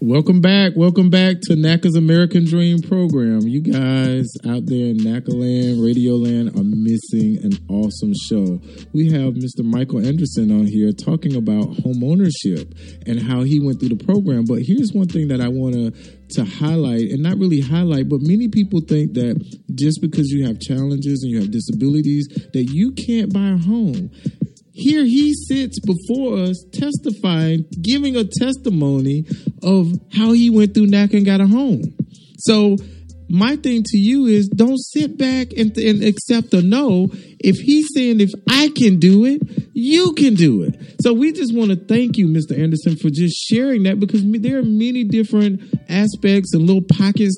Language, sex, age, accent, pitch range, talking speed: English, male, 40-59, American, 150-225 Hz, 175 wpm